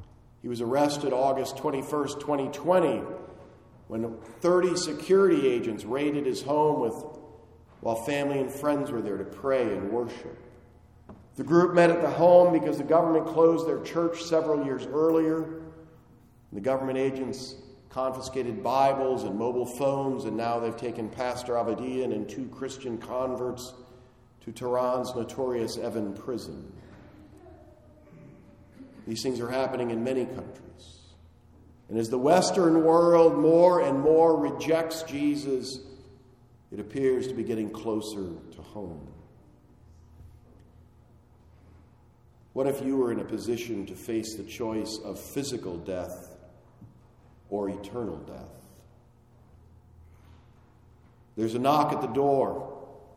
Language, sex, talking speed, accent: English, male, 125 wpm, American